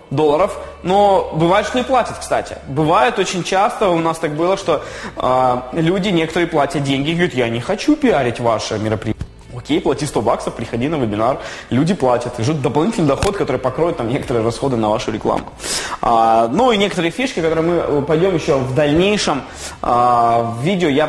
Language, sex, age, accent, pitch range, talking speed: Russian, male, 20-39, native, 135-195 Hz, 170 wpm